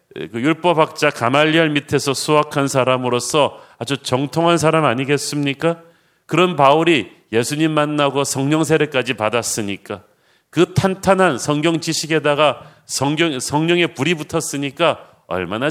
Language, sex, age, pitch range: Korean, male, 40-59, 135-160 Hz